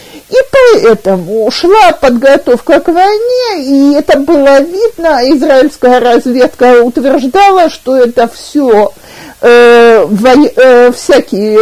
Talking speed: 100 wpm